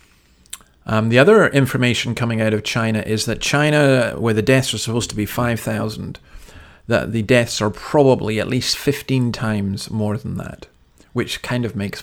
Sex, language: male, English